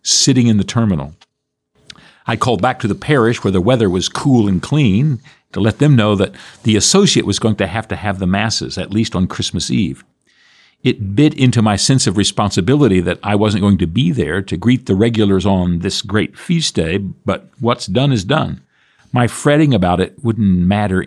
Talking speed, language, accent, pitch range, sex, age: 200 wpm, English, American, 100-125 Hz, male, 50-69